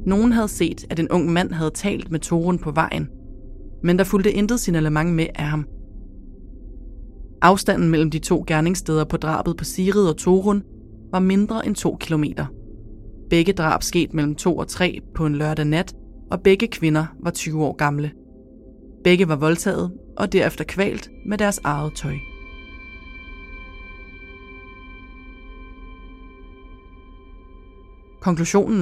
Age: 30-49